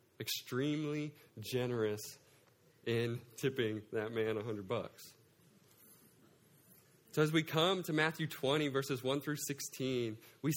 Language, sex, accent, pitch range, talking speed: English, male, American, 115-145 Hz, 120 wpm